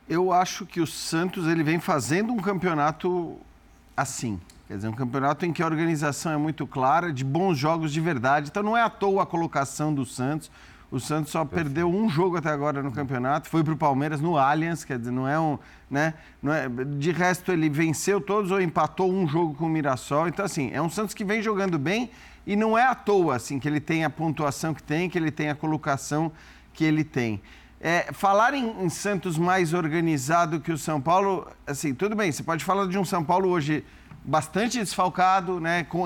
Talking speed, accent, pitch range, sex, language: 210 wpm, Brazilian, 150-185 Hz, male, Portuguese